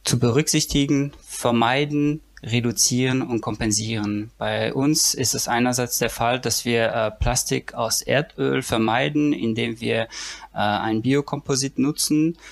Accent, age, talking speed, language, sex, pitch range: German, 20-39, 125 wpm, German, male, 115-140 Hz